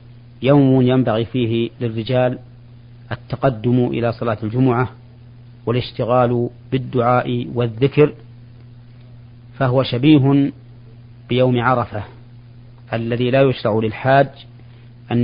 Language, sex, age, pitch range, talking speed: Arabic, male, 40-59, 120-130 Hz, 80 wpm